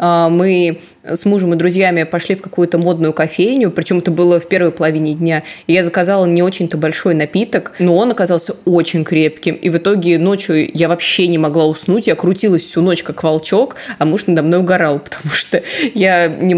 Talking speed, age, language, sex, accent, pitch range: 190 wpm, 20-39, Russian, female, native, 160-180 Hz